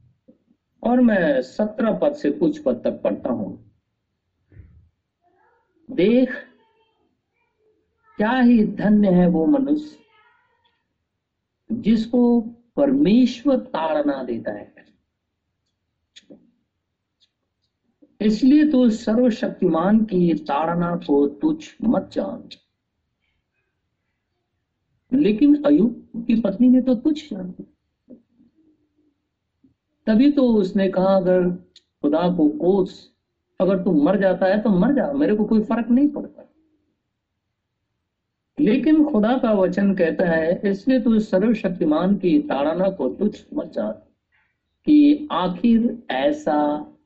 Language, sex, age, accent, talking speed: Hindi, male, 60-79, native, 100 wpm